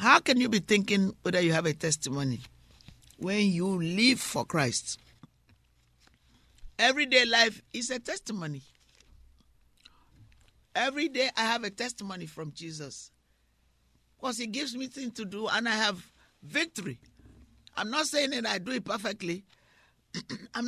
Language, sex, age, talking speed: English, male, 50-69, 140 wpm